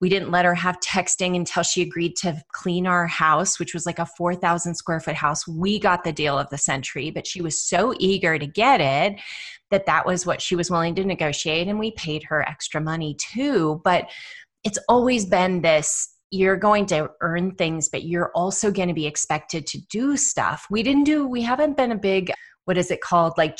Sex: female